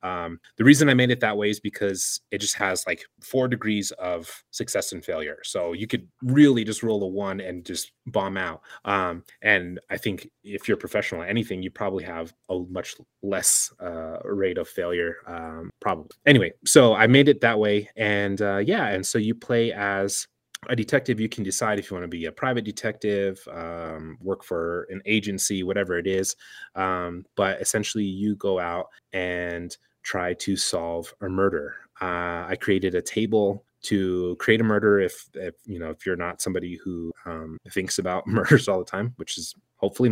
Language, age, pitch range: English, 30-49, 90-110 Hz